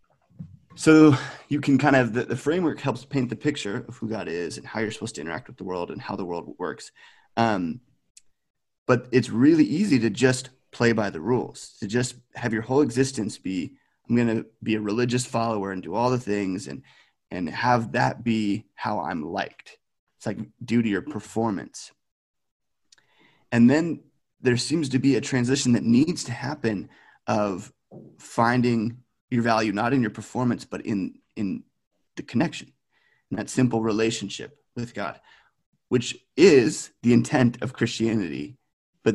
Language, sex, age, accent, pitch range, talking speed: English, male, 30-49, American, 110-130 Hz, 170 wpm